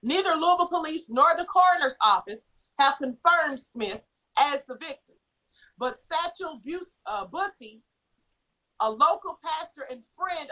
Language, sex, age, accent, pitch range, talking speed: English, female, 40-59, American, 255-340 Hz, 125 wpm